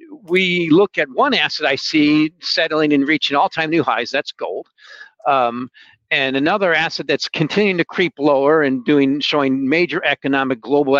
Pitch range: 130-165 Hz